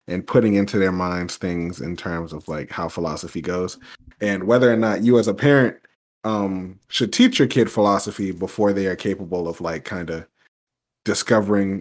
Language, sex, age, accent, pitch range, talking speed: English, male, 20-39, American, 85-105 Hz, 185 wpm